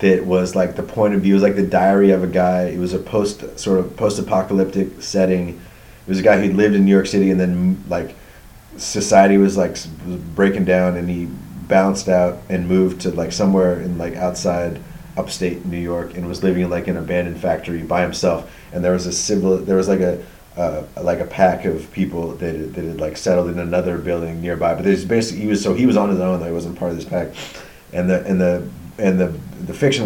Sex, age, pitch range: male, 30-49, 90-95 Hz